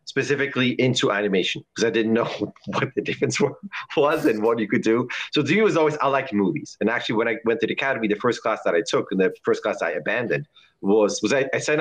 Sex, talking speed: male, 250 wpm